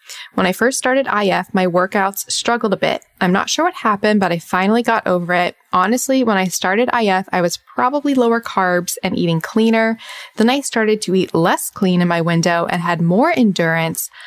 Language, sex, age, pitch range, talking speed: English, female, 20-39, 175-230 Hz, 200 wpm